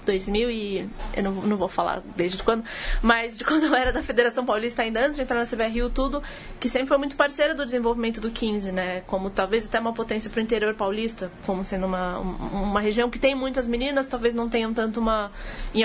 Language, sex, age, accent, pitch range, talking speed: Portuguese, female, 20-39, Brazilian, 215-255 Hz, 225 wpm